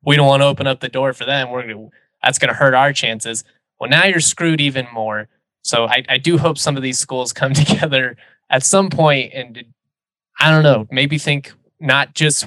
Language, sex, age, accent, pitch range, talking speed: English, male, 20-39, American, 115-140 Hz, 225 wpm